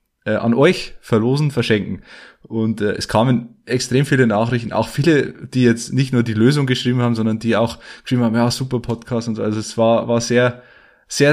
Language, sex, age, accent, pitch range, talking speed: German, male, 20-39, Austrian, 110-130 Hz, 195 wpm